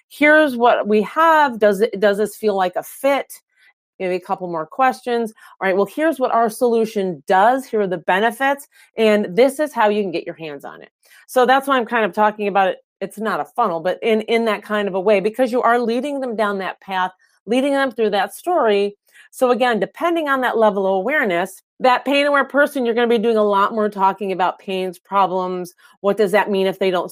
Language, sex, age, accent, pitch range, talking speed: English, female, 30-49, American, 195-250 Hz, 230 wpm